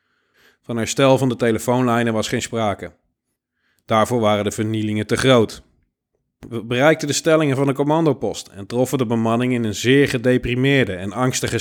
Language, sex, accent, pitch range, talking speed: Dutch, male, Dutch, 110-130 Hz, 160 wpm